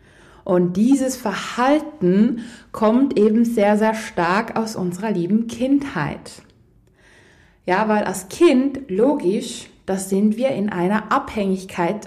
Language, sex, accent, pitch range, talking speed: German, female, German, 180-235 Hz, 115 wpm